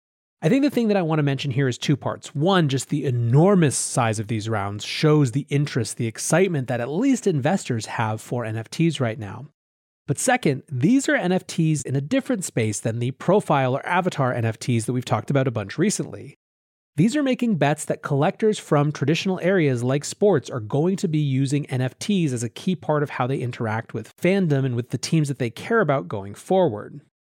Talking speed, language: 205 wpm, English